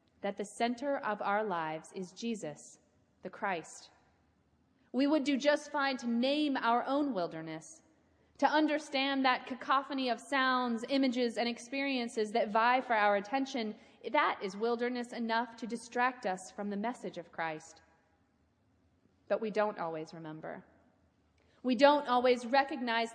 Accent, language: American, English